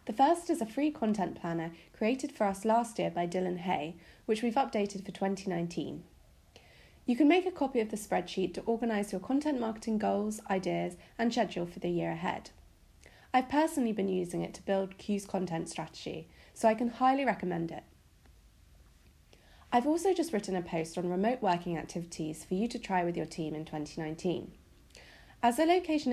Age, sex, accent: 30-49, female, British